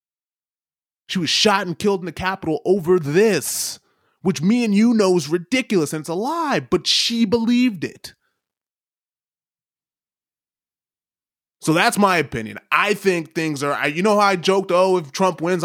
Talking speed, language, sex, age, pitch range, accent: 160 wpm, English, male, 20-39, 145-210 Hz, American